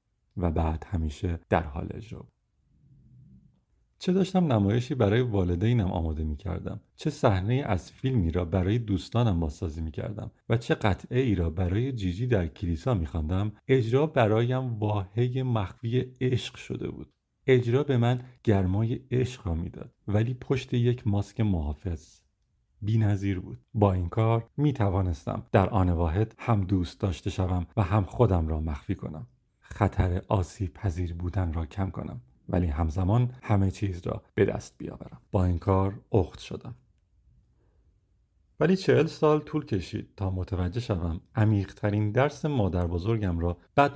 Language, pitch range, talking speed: Persian, 90-115 Hz, 145 wpm